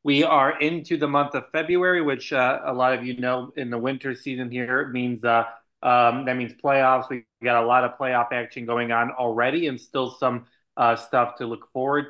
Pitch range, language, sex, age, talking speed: 120-135 Hz, English, male, 20-39, 215 wpm